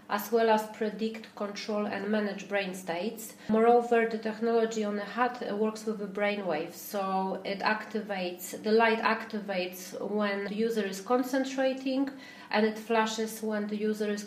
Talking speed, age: 155 wpm, 30-49